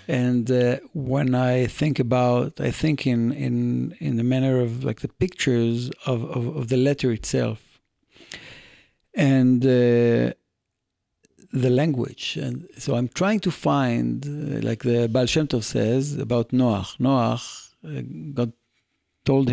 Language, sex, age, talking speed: Hebrew, male, 50-69, 140 wpm